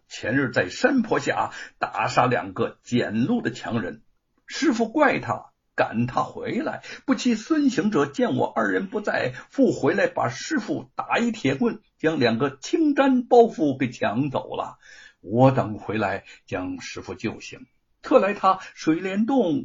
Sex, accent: male, native